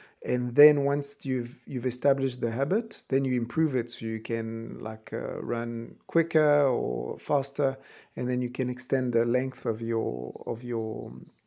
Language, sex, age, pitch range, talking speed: English, male, 50-69, 125-145 Hz, 170 wpm